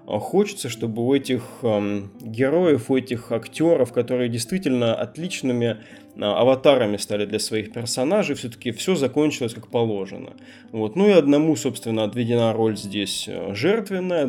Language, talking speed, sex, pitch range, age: Russian, 120 wpm, male, 110-140 Hz, 20-39